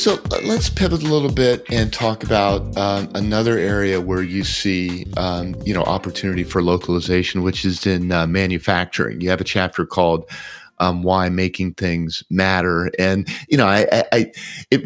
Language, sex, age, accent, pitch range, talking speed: English, male, 50-69, American, 90-100 Hz, 175 wpm